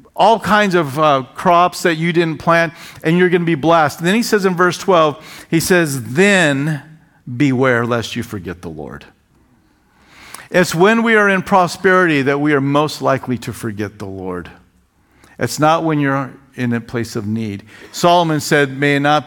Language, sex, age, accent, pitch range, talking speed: English, male, 50-69, American, 115-150 Hz, 185 wpm